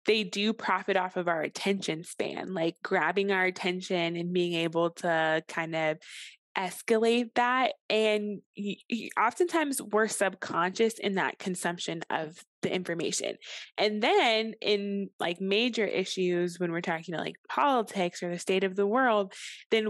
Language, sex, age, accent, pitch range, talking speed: English, female, 20-39, American, 180-225 Hz, 150 wpm